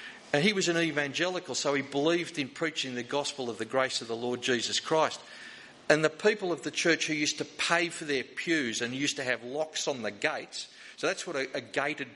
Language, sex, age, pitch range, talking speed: English, male, 50-69, 130-165 Hz, 230 wpm